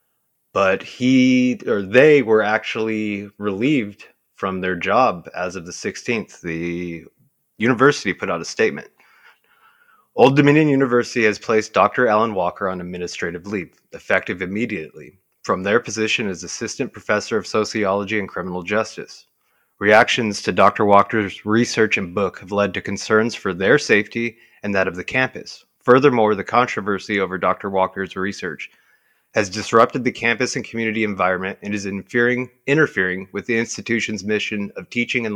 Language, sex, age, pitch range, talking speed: English, male, 30-49, 95-115 Hz, 150 wpm